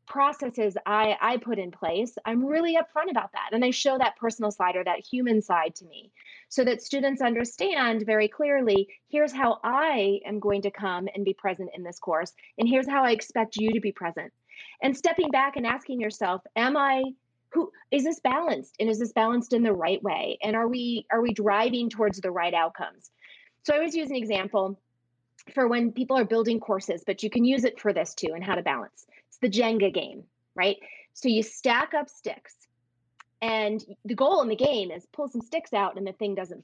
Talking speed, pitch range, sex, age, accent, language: 210 wpm, 195-260 Hz, female, 30-49, American, English